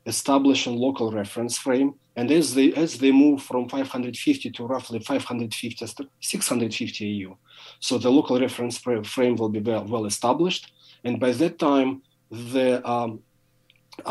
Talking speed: 145 wpm